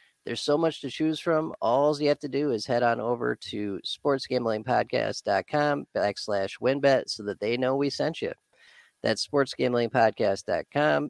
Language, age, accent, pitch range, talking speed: English, 40-59, American, 110-145 Hz, 150 wpm